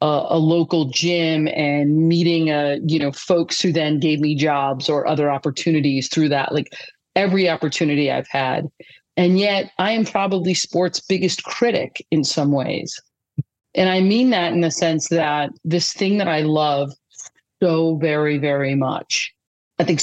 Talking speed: 165 wpm